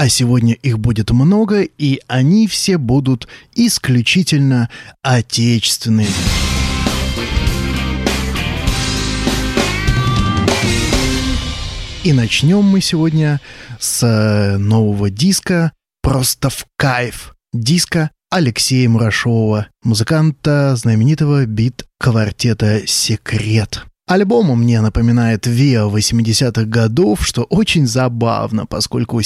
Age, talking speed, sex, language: 20-39, 80 wpm, male, Russian